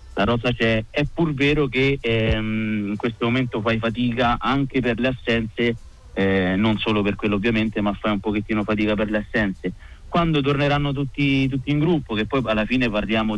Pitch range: 105-125 Hz